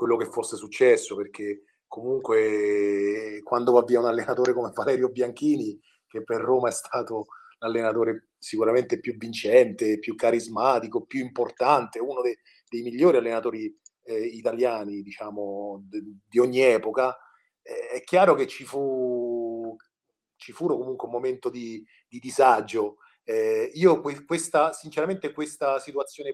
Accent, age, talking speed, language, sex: native, 30-49, 135 wpm, Italian, male